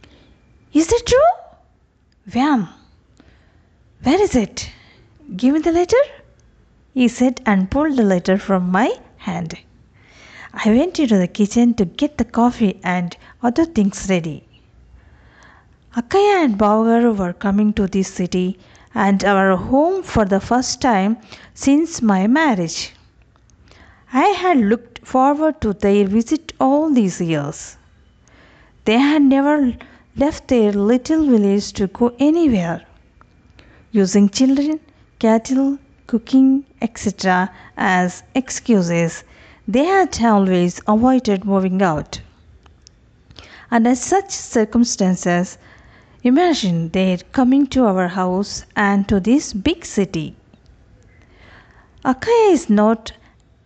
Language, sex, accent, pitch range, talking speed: Telugu, female, native, 190-270 Hz, 115 wpm